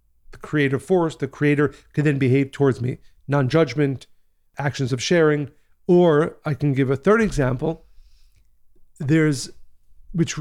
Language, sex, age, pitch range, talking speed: English, male, 50-69, 130-155 Hz, 135 wpm